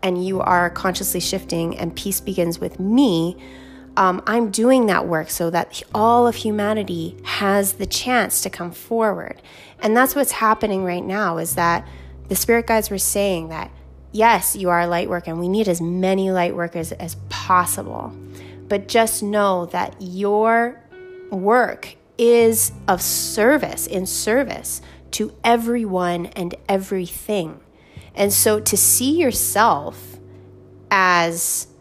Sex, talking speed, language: female, 145 wpm, English